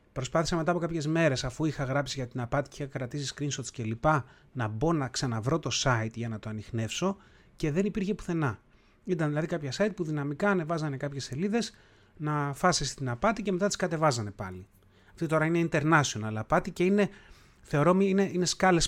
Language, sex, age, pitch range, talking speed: Greek, male, 30-49, 115-155 Hz, 190 wpm